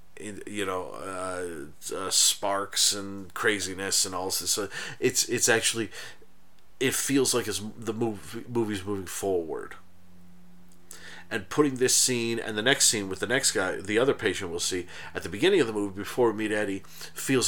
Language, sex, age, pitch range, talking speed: English, male, 40-59, 90-120 Hz, 175 wpm